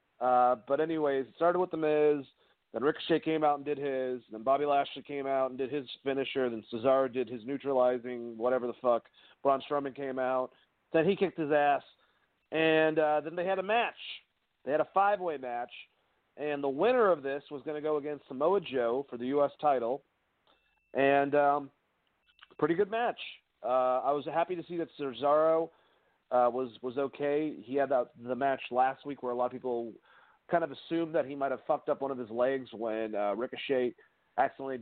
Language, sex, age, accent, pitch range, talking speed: English, male, 40-59, American, 125-155 Hz, 195 wpm